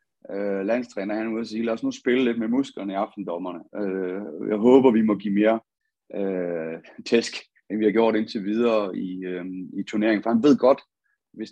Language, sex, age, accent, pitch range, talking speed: Danish, male, 30-49, native, 100-115 Hz, 200 wpm